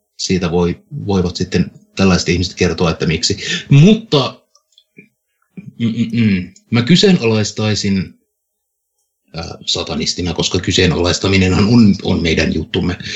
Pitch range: 95-135 Hz